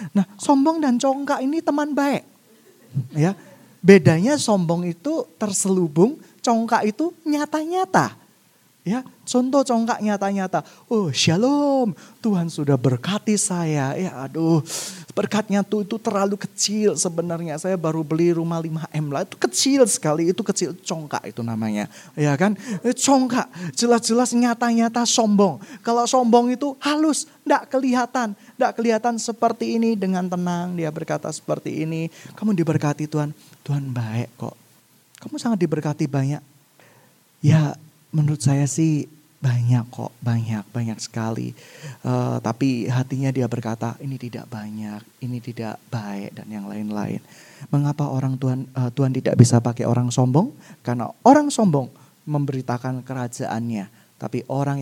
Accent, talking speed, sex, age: native, 130 wpm, male, 20-39